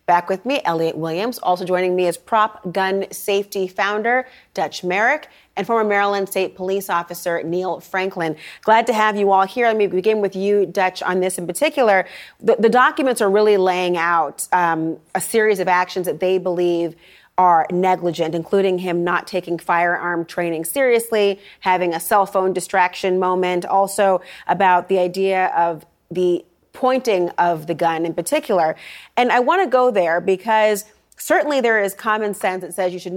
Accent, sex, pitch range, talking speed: American, female, 175-215 Hz, 175 wpm